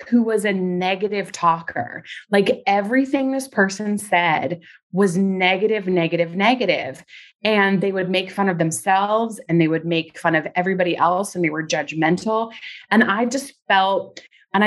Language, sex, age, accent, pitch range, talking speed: English, female, 30-49, American, 175-220 Hz, 155 wpm